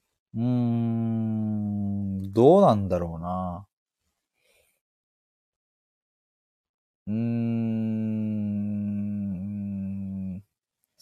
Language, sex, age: Japanese, male, 30-49